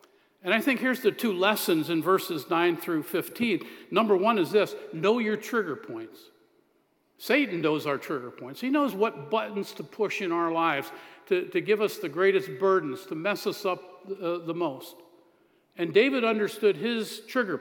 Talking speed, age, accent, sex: 180 wpm, 50-69, American, male